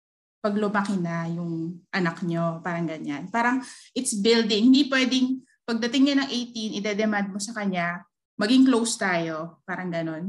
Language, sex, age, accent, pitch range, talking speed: Filipino, female, 20-39, native, 180-245 Hz, 140 wpm